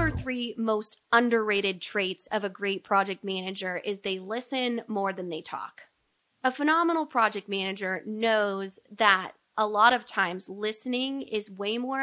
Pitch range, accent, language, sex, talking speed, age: 190-235 Hz, American, English, female, 150 wpm, 20-39